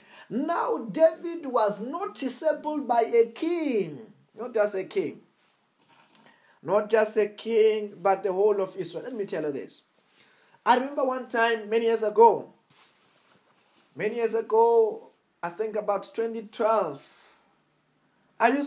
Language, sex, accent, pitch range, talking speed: English, male, South African, 195-245 Hz, 125 wpm